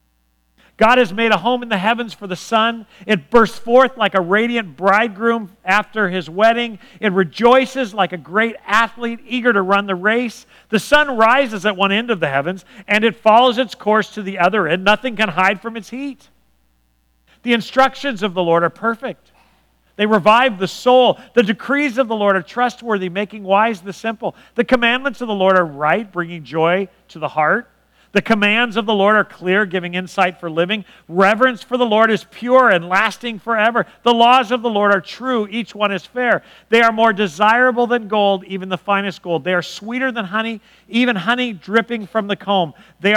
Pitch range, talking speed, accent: 185-235 Hz, 200 wpm, American